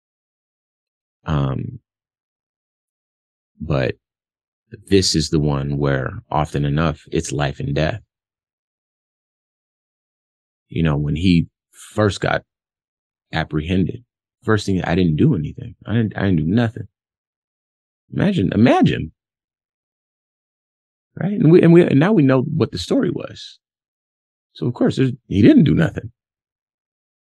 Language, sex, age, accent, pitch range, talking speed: English, male, 30-49, American, 75-105 Hz, 120 wpm